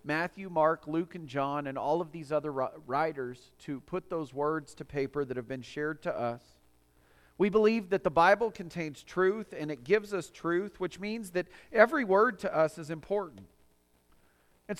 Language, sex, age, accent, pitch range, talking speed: English, male, 40-59, American, 120-205 Hz, 185 wpm